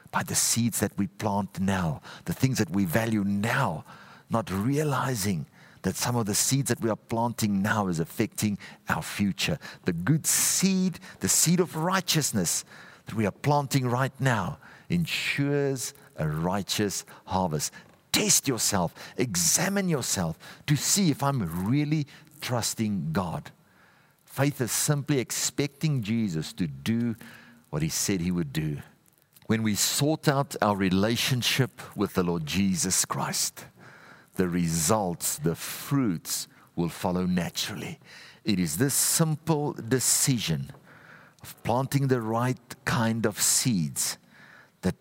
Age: 50-69